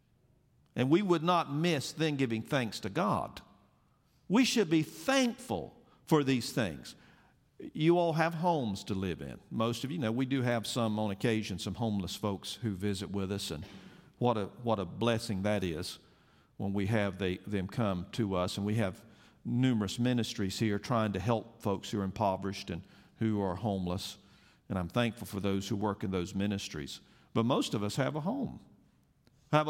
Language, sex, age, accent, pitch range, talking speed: English, male, 50-69, American, 105-170 Hz, 185 wpm